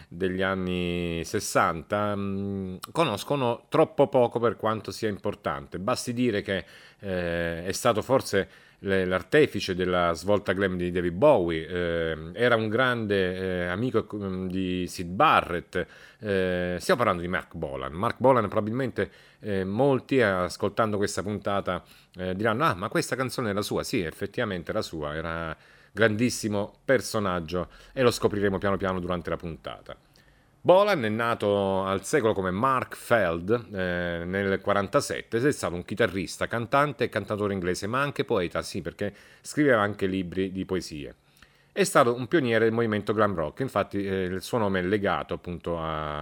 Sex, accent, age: male, Italian, 40-59